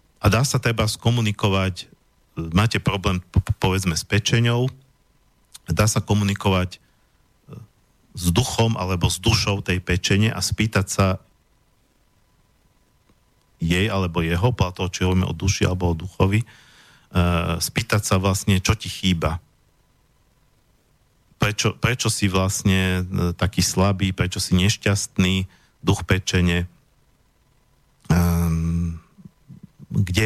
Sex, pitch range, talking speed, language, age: male, 90-110 Hz, 115 wpm, Slovak, 50-69